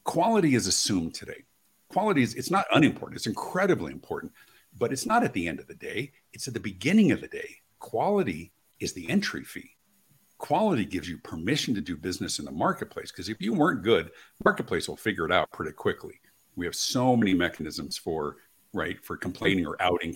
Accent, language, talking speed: American, English, 195 wpm